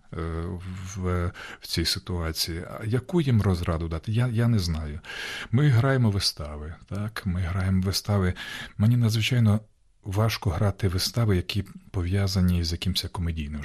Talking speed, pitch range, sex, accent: 130 wpm, 85-105 Hz, male, native